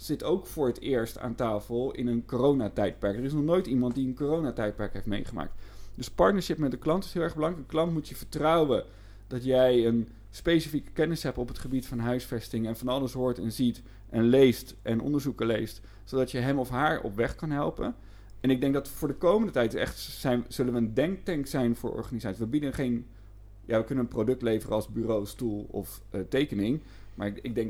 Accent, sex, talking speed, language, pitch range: Dutch, male, 210 wpm, Dutch, 105-140 Hz